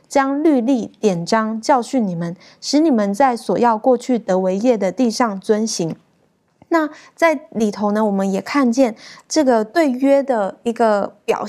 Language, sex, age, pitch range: Chinese, female, 20-39, 205-265 Hz